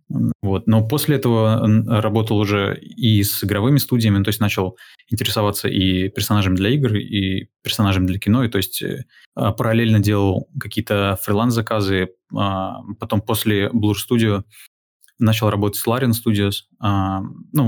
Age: 20-39